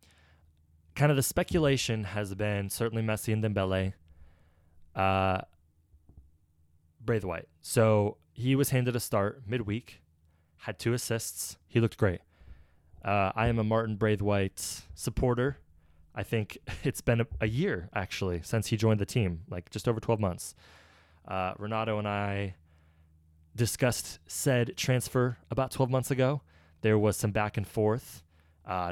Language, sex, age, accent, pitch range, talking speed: English, male, 20-39, American, 85-120 Hz, 140 wpm